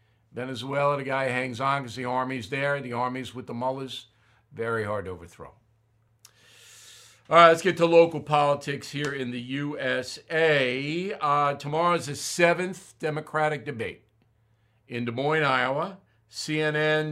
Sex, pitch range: male, 115-155 Hz